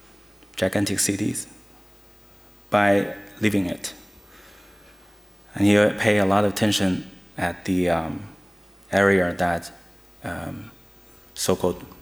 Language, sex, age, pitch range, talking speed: German, male, 20-39, 90-105 Hz, 95 wpm